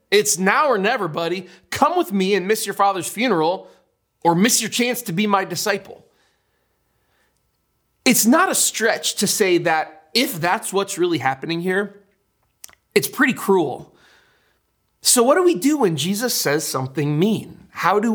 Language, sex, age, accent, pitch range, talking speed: English, male, 30-49, American, 170-245 Hz, 160 wpm